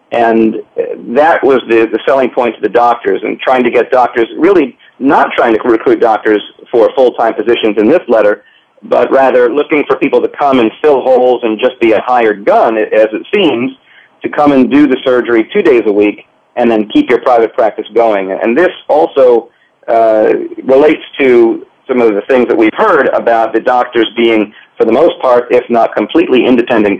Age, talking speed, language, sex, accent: 40-59, 195 wpm, English, male, American